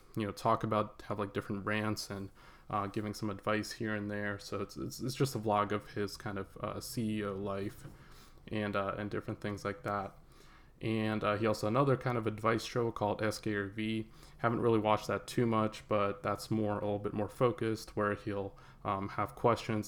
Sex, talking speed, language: male, 200 wpm, English